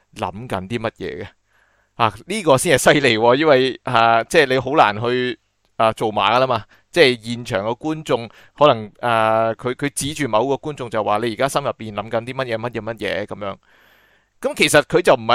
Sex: male